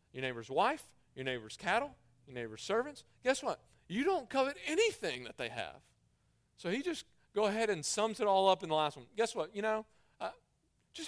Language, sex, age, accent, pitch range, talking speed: English, male, 40-59, American, 130-200 Hz, 205 wpm